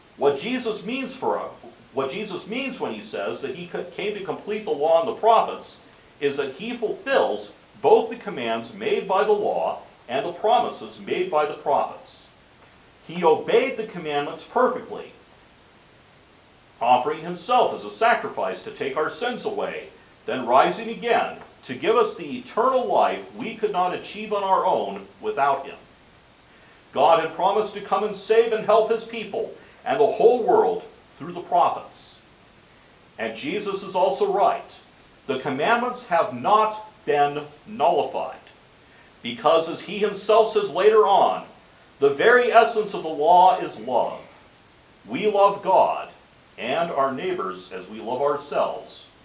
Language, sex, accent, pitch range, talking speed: English, male, American, 180-245 Hz, 150 wpm